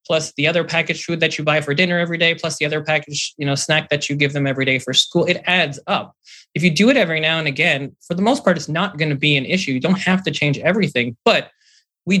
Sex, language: male, English